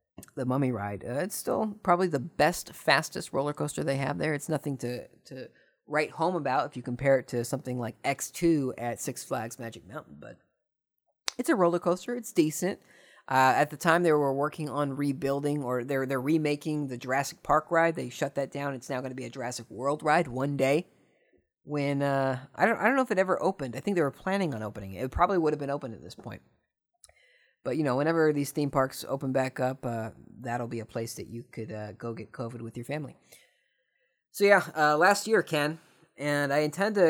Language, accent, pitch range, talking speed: English, American, 125-165 Hz, 220 wpm